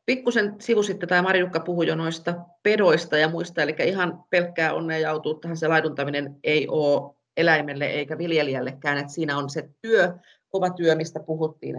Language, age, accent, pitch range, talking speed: Finnish, 30-49, native, 150-175 Hz, 165 wpm